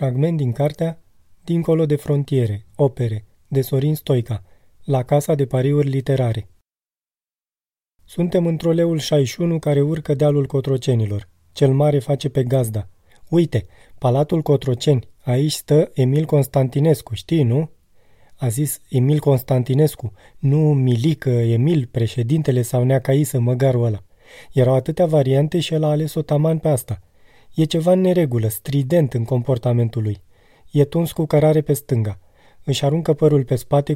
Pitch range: 120-155 Hz